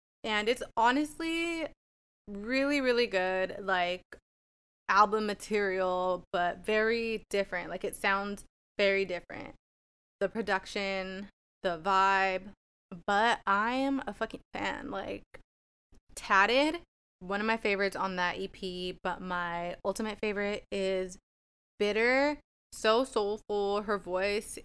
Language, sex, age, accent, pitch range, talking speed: English, female, 20-39, American, 185-225 Hz, 110 wpm